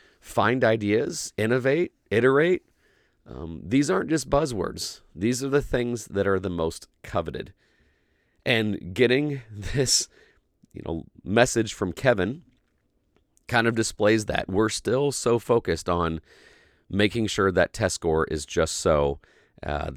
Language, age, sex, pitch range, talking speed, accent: English, 30-49, male, 80-105 Hz, 130 wpm, American